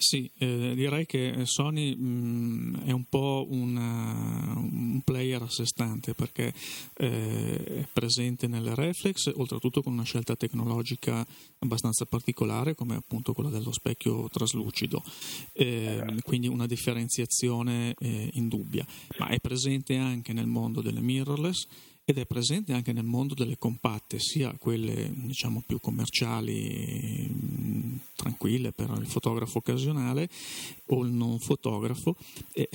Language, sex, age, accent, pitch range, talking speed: Italian, male, 40-59, native, 120-140 Hz, 130 wpm